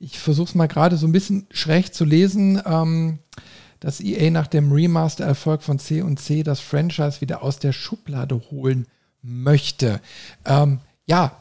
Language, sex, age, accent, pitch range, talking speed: German, male, 50-69, German, 140-170 Hz, 155 wpm